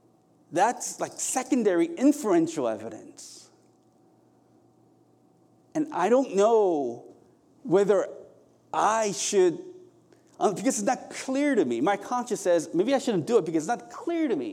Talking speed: 130 wpm